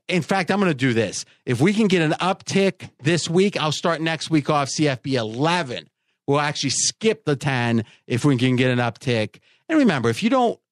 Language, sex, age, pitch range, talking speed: English, male, 40-59, 130-170 Hz, 215 wpm